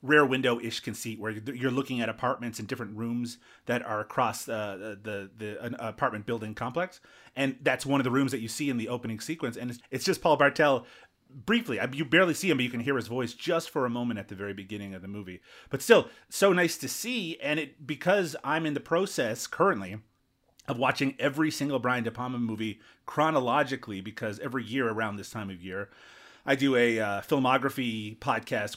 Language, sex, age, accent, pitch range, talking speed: English, male, 30-49, American, 110-140 Hz, 210 wpm